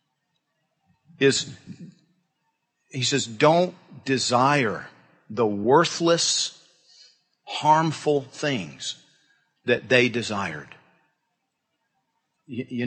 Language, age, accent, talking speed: English, 40-59, American, 60 wpm